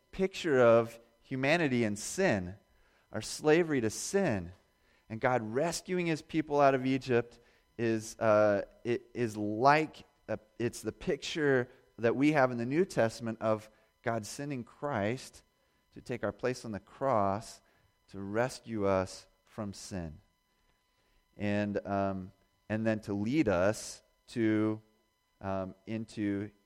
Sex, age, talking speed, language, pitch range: male, 30-49, 130 wpm, English, 100-130 Hz